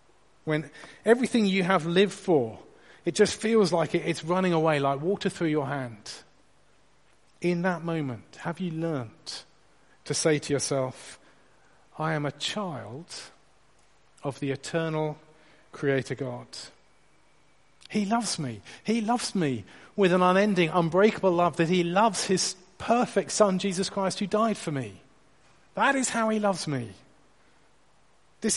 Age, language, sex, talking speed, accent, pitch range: 40-59, English, male, 140 wpm, British, 135-190 Hz